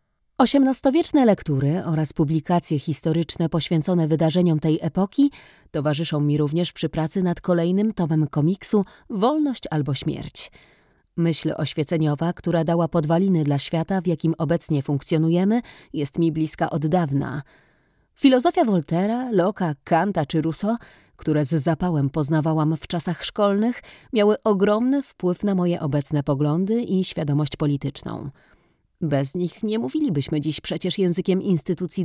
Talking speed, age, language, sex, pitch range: 125 wpm, 30-49, Polish, female, 155-205 Hz